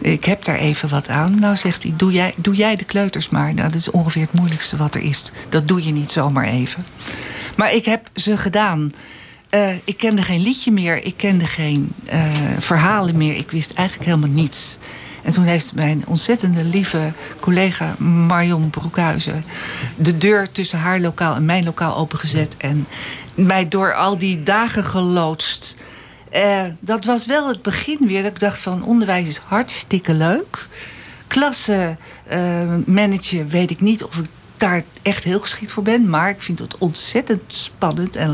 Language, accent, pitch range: Dutch, Dutch, 160-205 Hz